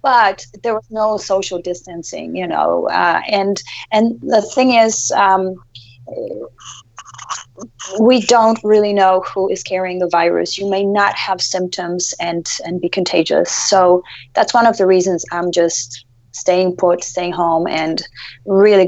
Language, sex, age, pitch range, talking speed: English, female, 30-49, 180-215 Hz, 150 wpm